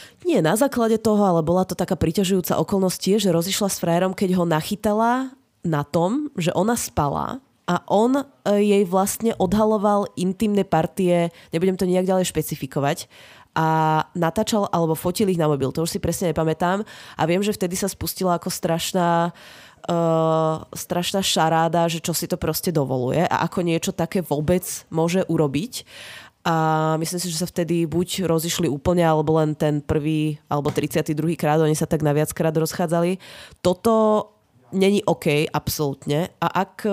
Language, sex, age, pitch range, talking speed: Czech, female, 20-39, 155-190 Hz, 160 wpm